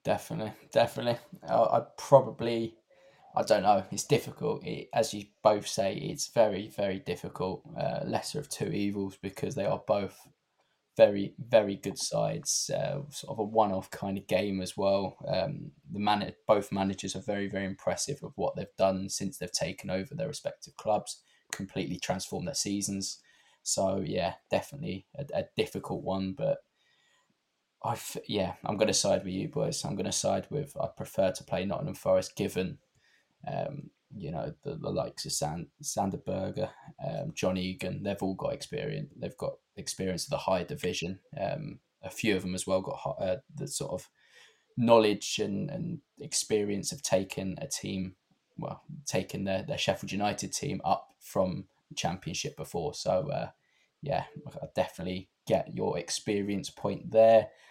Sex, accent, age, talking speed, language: male, British, 10-29, 160 wpm, English